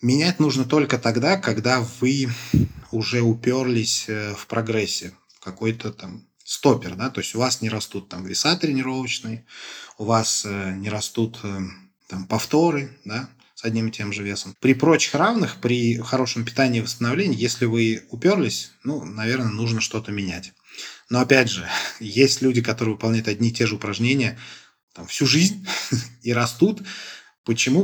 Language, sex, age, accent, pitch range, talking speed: Russian, male, 20-39, native, 105-125 Hz, 150 wpm